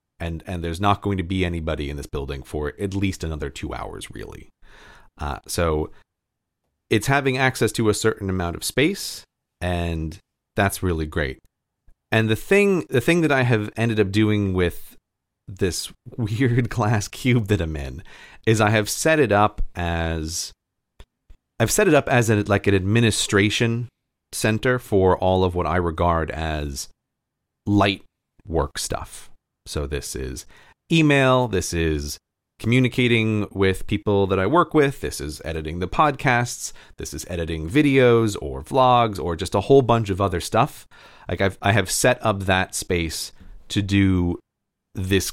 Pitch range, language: 85-115 Hz, English